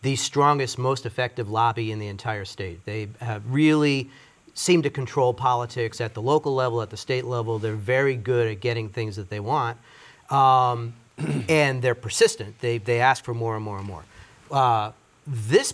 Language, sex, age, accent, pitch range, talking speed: English, male, 40-59, American, 120-150 Hz, 185 wpm